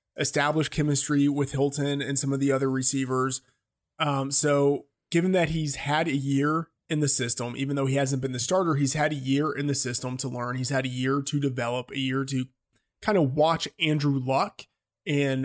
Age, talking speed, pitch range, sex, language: 20-39, 200 wpm, 130-155 Hz, male, English